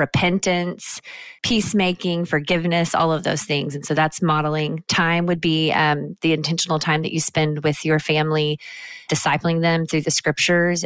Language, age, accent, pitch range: English, 20-39, American, 145-170 Hz